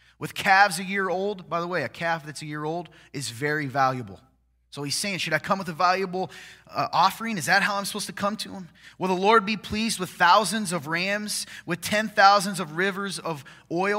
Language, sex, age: English, male, 20-39